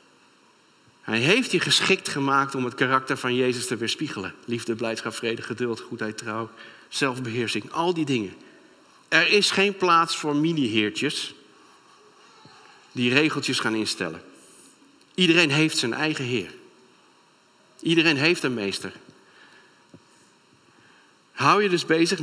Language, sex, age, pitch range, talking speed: Dutch, male, 50-69, 120-185 Hz, 120 wpm